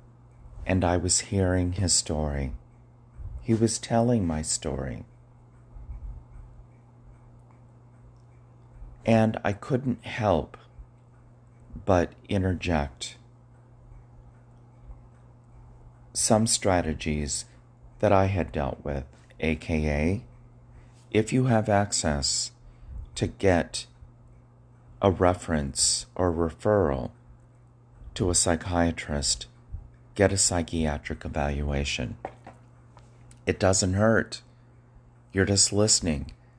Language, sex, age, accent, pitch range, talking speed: English, male, 40-59, American, 80-120 Hz, 80 wpm